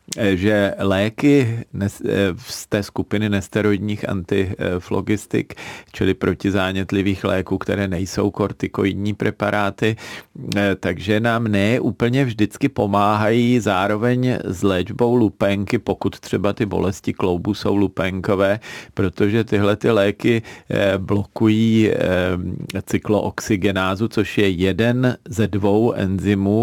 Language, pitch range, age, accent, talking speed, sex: Czech, 95-105 Hz, 40-59, native, 95 wpm, male